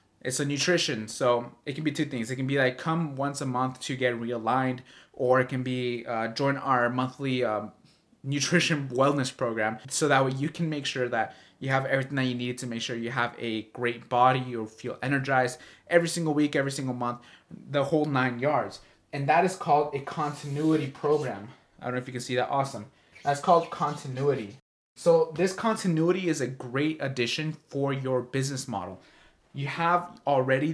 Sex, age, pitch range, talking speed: male, 20-39, 125-155 Hz, 195 wpm